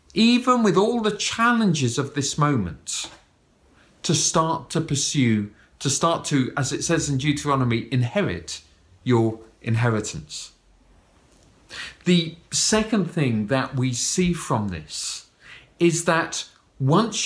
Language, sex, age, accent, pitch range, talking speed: English, male, 40-59, British, 135-190 Hz, 120 wpm